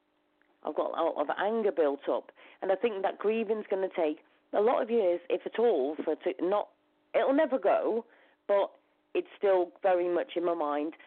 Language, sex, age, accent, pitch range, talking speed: English, female, 40-59, British, 175-270 Hz, 205 wpm